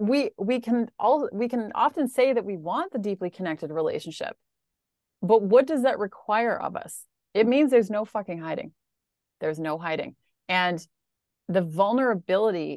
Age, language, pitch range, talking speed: 30-49, English, 175-230 Hz, 160 wpm